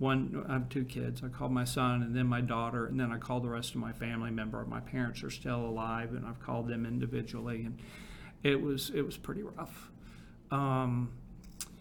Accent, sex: American, male